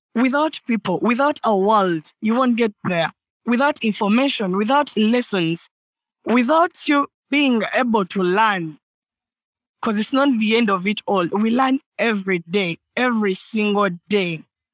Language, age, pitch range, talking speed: English, 20-39, 195-250 Hz, 140 wpm